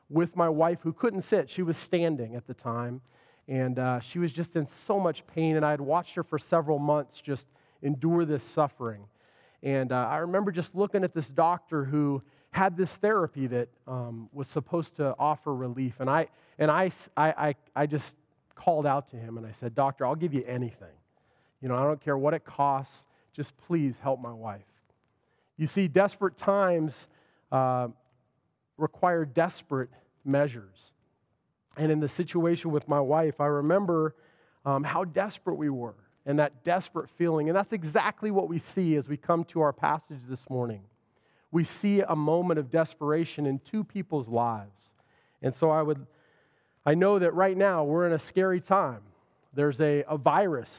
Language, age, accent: English, 30-49, American